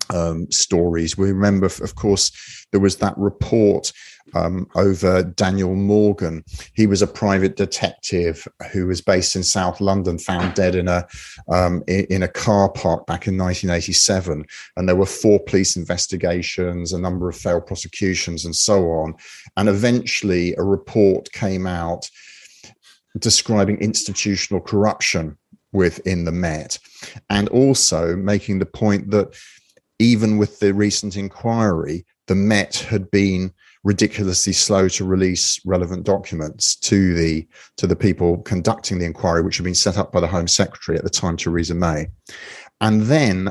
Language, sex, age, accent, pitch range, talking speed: English, male, 30-49, British, 90-100 Hz, 150 wpm